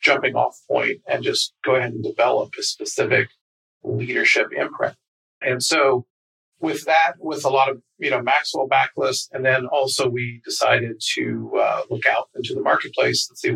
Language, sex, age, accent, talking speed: English, male, 40-59, American, 175 wpm